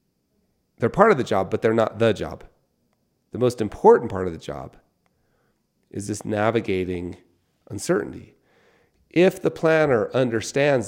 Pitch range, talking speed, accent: 95-125 Hz, 140 wpm, American